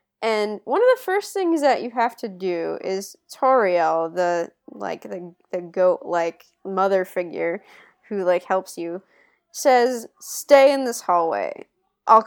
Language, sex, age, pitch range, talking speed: English, female, 10-29, 185-305 Hz, 145 wpm